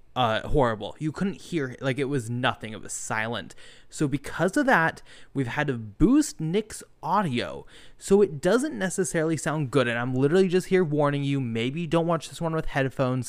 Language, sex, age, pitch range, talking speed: English, male, 20-39, 120-160 Hz, 190 wpm